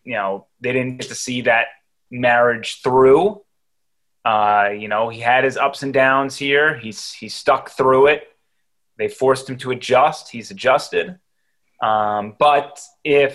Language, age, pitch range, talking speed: English, 20-39, 125-150 Hz, 155 wpm